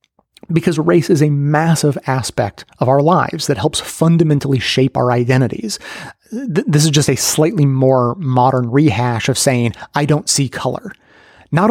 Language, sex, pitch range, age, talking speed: English, male, 125-160 Hz, 30-49, 155 wpm